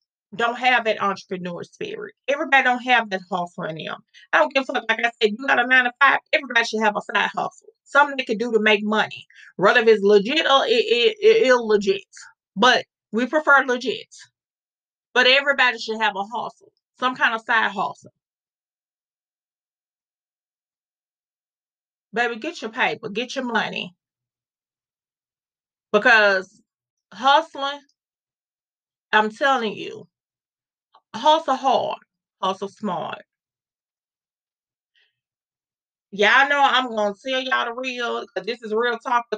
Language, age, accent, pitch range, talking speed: English, 30-49, American, 210-280 Hz, 140 wpm